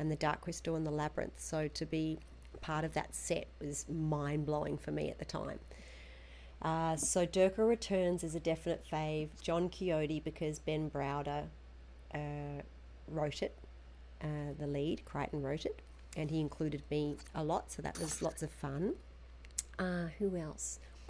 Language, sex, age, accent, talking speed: English, female, 40-59, Australian, 165 wpm